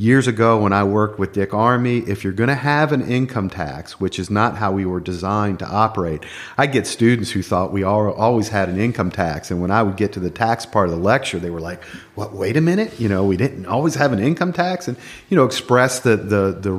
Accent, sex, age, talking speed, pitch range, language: American, male, 40-59, 250 wpm, 95-120 Hz, English